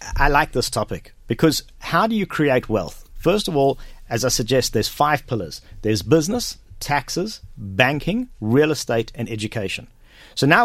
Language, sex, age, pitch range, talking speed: English, male, 50-69, 115-160 Hz, 165 wpm